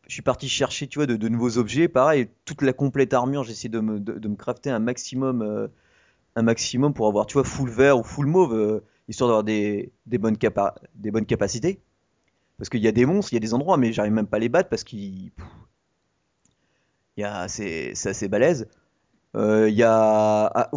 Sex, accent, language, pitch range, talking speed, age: male, French, French, 105-135 Hz, 215 wpm, 30-49